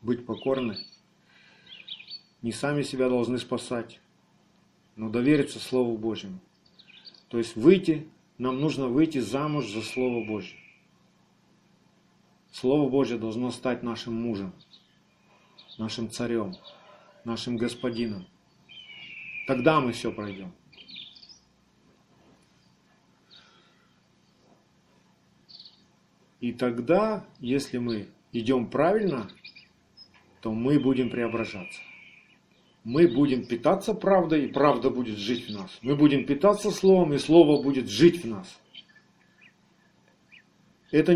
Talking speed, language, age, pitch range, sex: 95 wpm, Russian, 40-59, 125-180 Hz, male